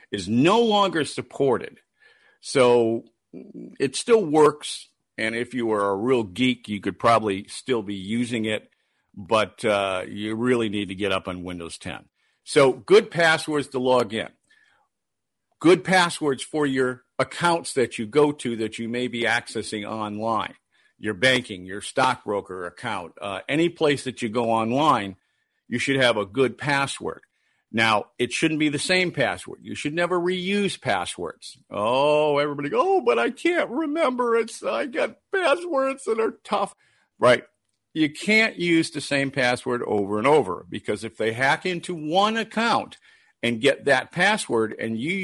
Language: English